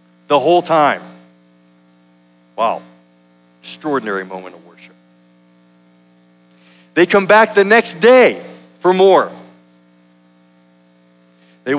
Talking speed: 85 wpm